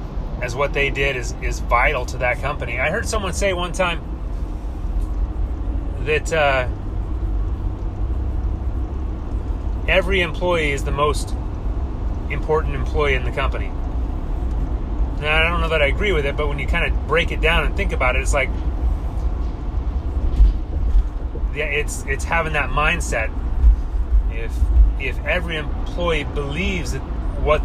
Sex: male